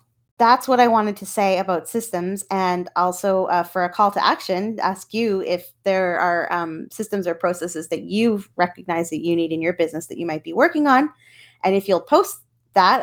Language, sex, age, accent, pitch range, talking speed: English, female, 20-39, American, 160-220 Hz, 210 wpm